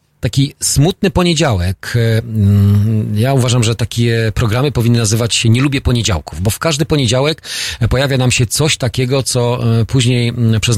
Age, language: 40-59, Polish